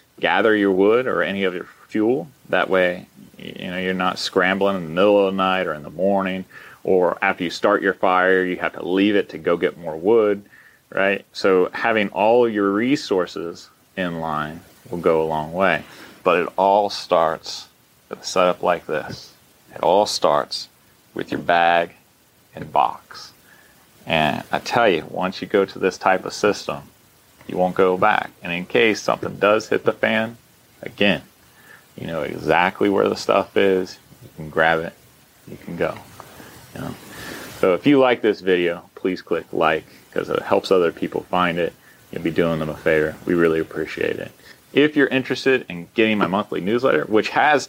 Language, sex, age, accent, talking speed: English, male, 30-49, American, 185 wpm